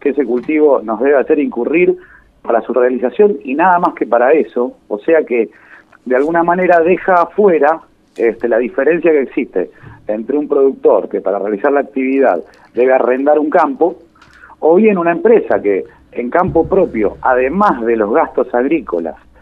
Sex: male